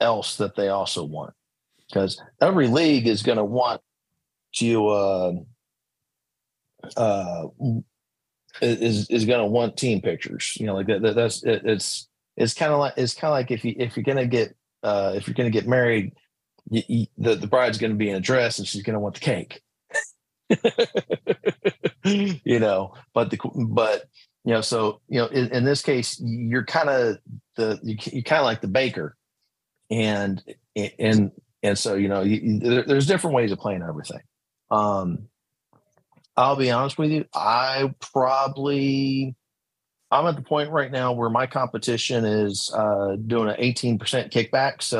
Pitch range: 105-130 Hz